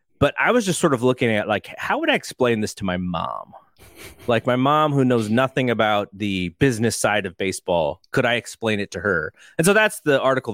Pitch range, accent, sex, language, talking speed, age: 105-155 Hz, American, male, English, 230 wpm, 30-49